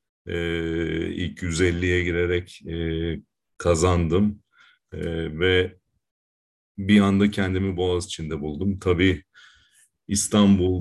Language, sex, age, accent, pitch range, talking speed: Turkish, male, 40-59, native, 85-100 Hz, 85 wpm